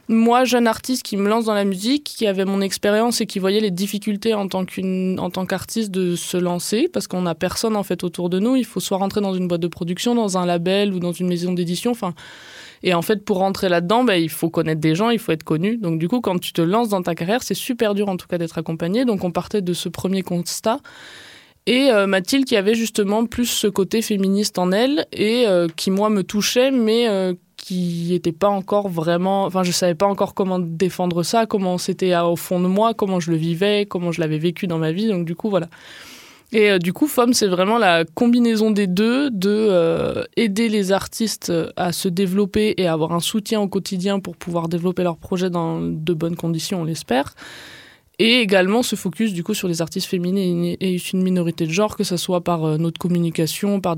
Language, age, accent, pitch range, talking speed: French, 20-39, French, 175-215 Hz, 230 wpm